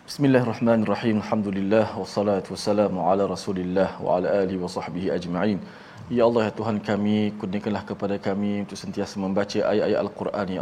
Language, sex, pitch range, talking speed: Malayalam, male, 100-105 Hz, 175 wpm